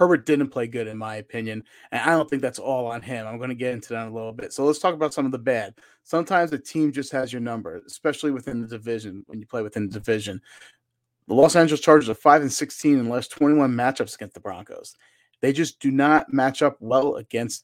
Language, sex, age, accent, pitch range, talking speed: English, male, 30-49, American, 120-150 Hz, 250 wpm